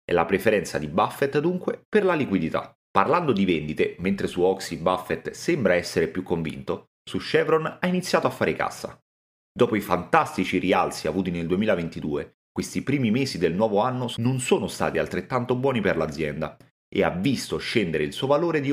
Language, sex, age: Italian, male, 30-49